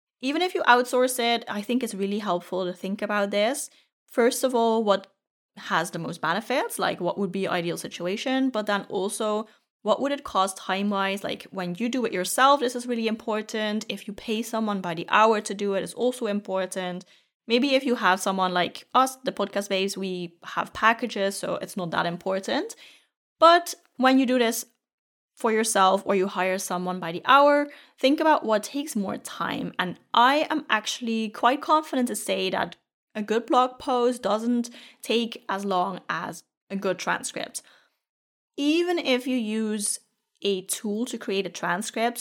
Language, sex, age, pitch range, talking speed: English, female, 30-49, 195-250 Hz, 180 wpm